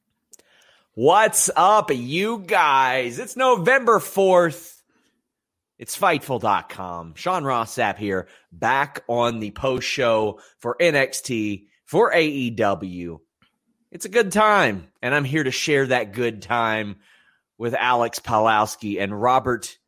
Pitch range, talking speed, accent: 120-170 Hz, 115 wpm, American